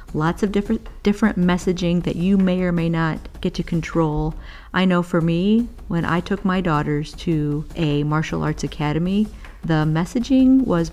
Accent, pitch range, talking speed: American, 155-190 Hz, 170 wpm